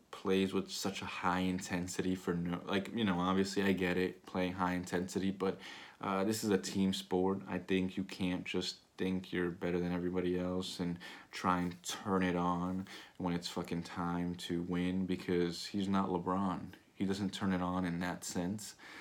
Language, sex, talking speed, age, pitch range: English, male, 190 wpm, 20-39, 90-95 Hz